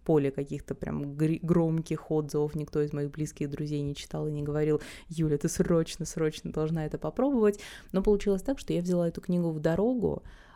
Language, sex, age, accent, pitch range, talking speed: Russian, female, 20-39, native, 150-175 Hz, 175 wpm